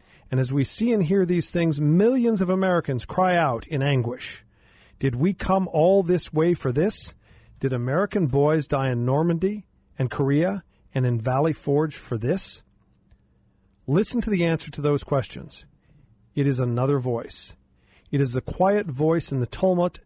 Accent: American